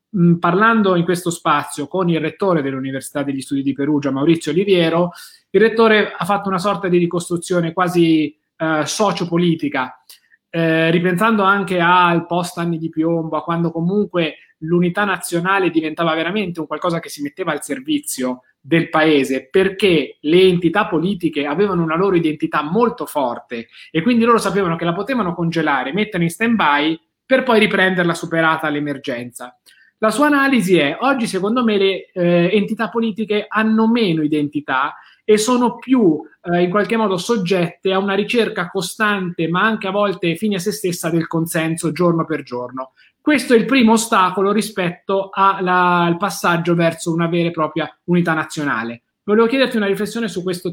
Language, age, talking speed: Italian, 20-39, 160 wpm